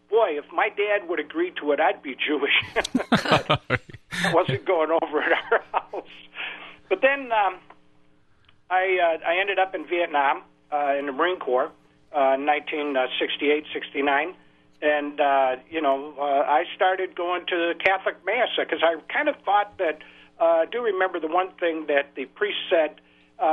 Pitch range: 135-175 Hz